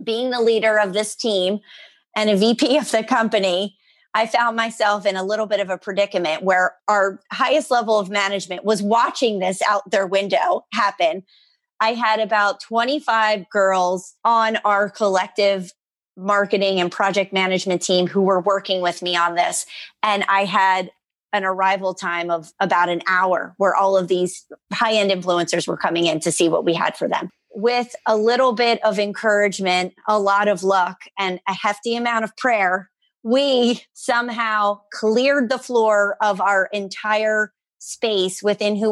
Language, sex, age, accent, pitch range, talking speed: English, female, 30-49, American, 190-225 Hz, 165 wpm